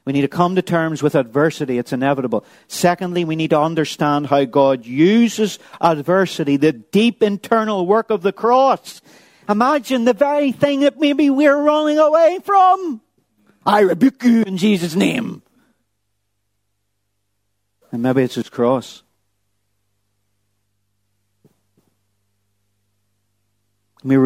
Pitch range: 105-160 Hz